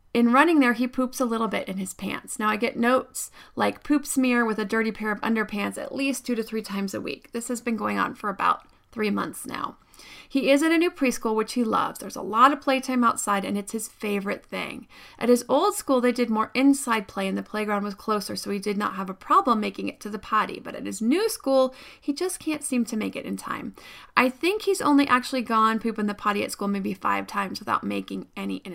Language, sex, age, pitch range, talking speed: English, female, 30-49, 220-270 Hz, 250 wpm